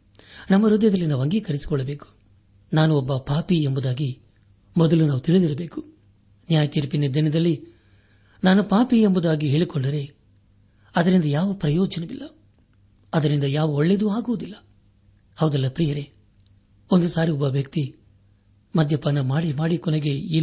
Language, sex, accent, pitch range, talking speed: Kannada, male, native, 100-165 Hz, 105 wpm